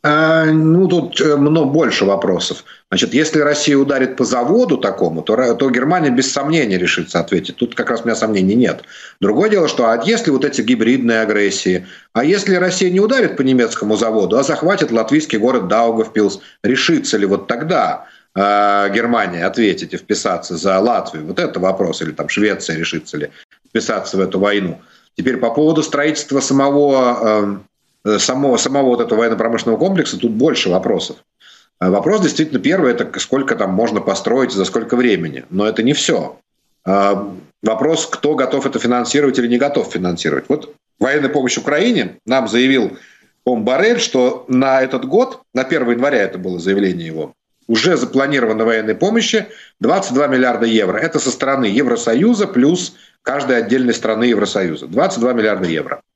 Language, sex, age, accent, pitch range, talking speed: Ukrainian, male, 50-69, native, 110-145 Hz, 160 wpm